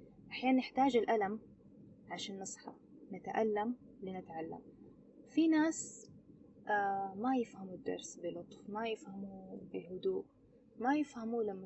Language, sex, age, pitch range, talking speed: Arabic, female, 20-39, 195-250 Hz, 105 wpm